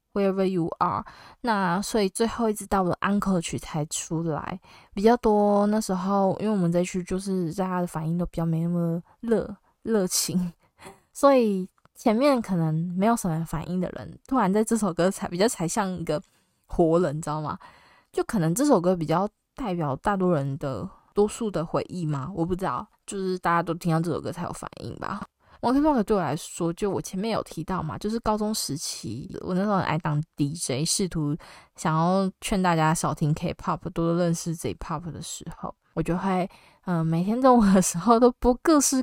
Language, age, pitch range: Chinese, 20-39, 165-210 Hz